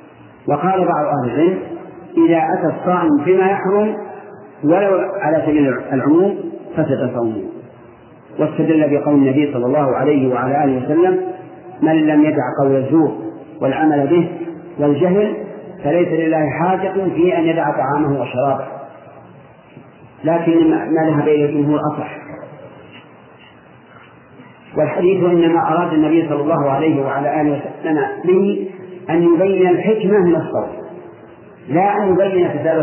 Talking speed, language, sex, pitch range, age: 120 wpm, Arabic, male, 145-175 Hz, 40-59